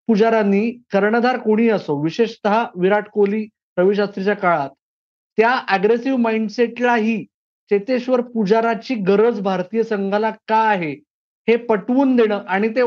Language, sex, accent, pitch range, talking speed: Marathi, male, native, 185-225 Hz, 95 wpm